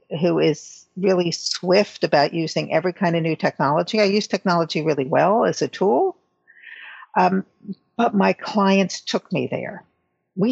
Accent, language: American, English